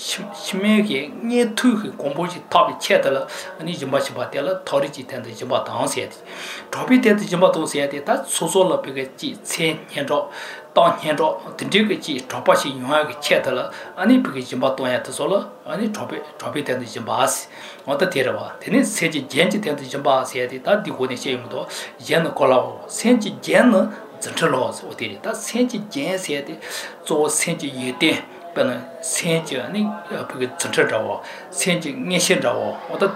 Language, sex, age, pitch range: English, male, 60-79, 140-215 Hz